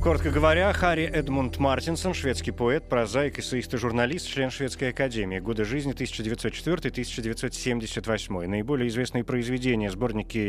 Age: 30-49